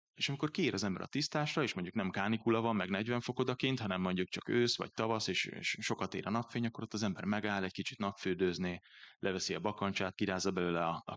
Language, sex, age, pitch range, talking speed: Hungarian, male, 20-39, 95-120 Hz, 215 wpm